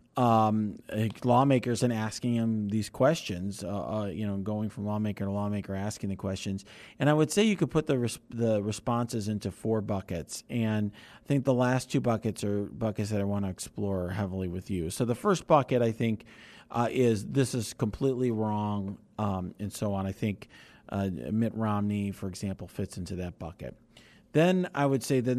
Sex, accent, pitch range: male, American, 100-120 Hz